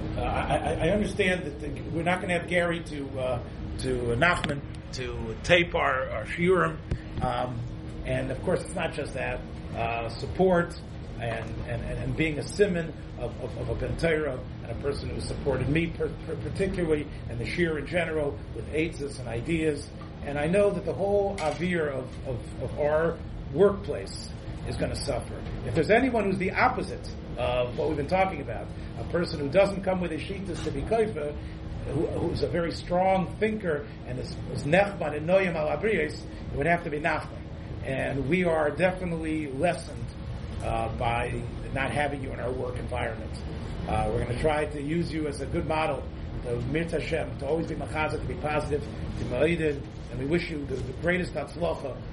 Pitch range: 120-165 Hz